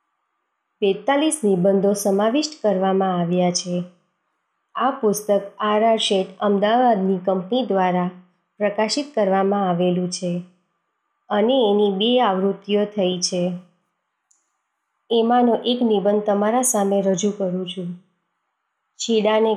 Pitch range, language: 190-220 Hz, Gujarati